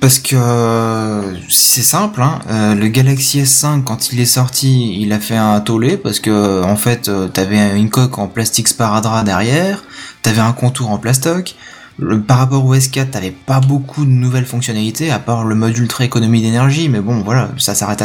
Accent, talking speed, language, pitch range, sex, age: French, 195 wpm, French, 110-135 Hz, male, 20-39